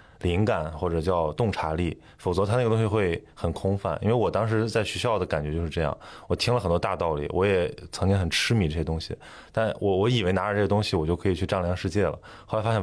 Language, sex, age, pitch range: Chinese, male, 20-39, 90-110 Hz